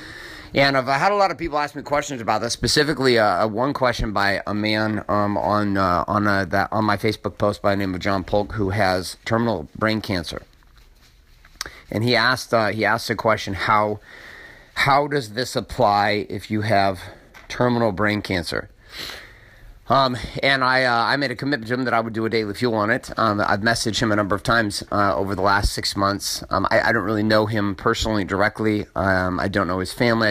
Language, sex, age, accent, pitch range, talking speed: English, male, 30-49, American, 100-115 Hz, 215 wpm